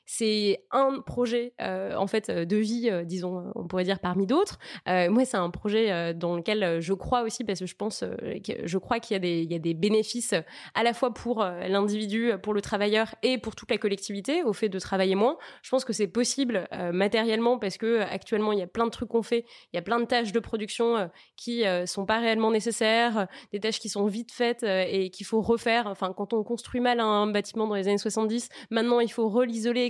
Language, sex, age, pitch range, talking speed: French, female, 20-39, 200-240 Hz, 245 wpm